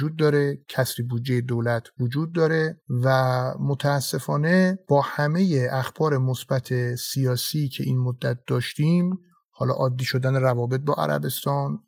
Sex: male